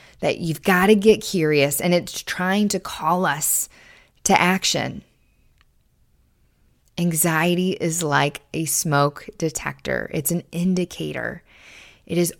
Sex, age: female, 20-39